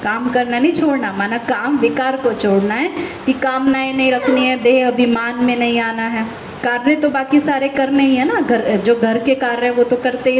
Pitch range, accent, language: 235-285 Hz, native, Hindi